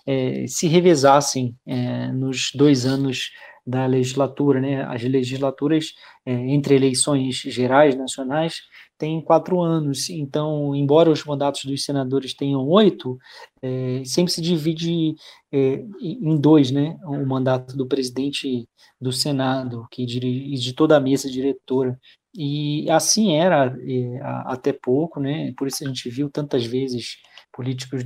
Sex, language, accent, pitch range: male, Portuguese, Brazilian, 130-150 Hz